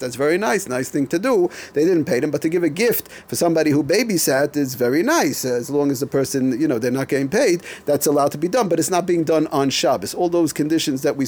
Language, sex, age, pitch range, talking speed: English, male, 40-59, 125-160 Hz, 270 wpm